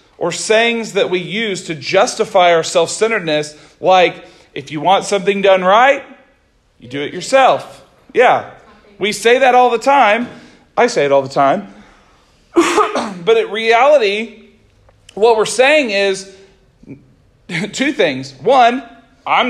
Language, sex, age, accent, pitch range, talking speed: English, male, 40-59, American, 170-230 Hz, 135 wpm